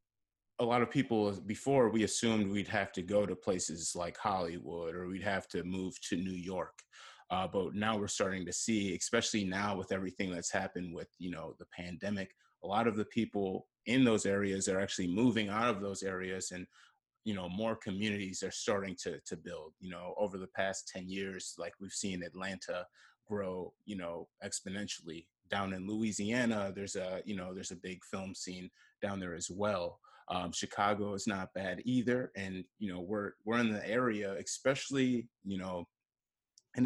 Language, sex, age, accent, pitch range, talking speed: English, male, 30-49, American, 95-110 Hz, 185 wpm